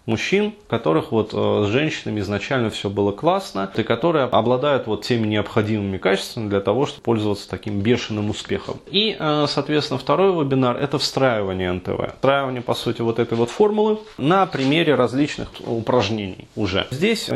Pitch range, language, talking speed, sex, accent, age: 110-140 Hz, Russian, 150 wpm, male, native, 30-49